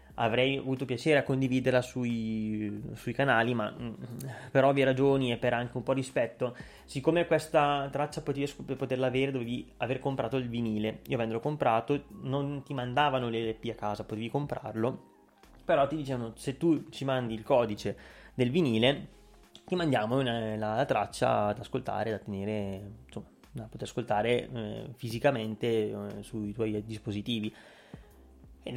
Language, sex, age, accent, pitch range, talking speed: Italian, male, 20-39, native, 115-135 Hz, 155 wpm